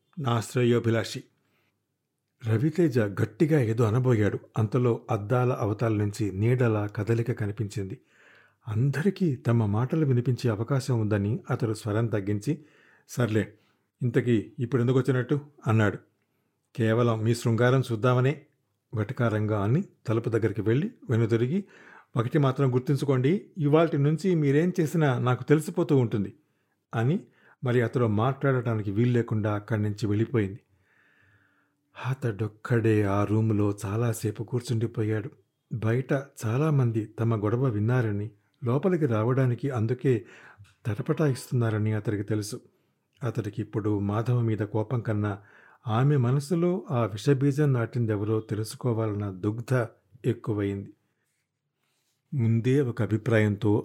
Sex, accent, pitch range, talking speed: male, native, 110-135 Hz, 100 wpm